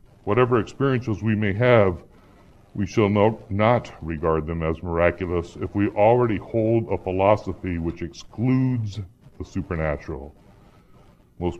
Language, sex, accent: English, female, American